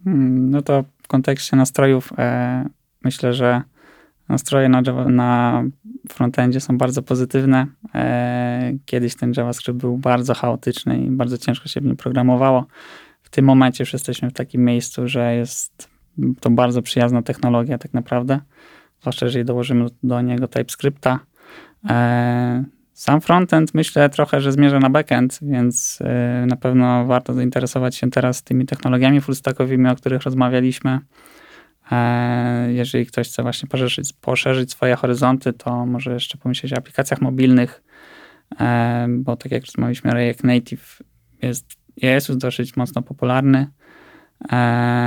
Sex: male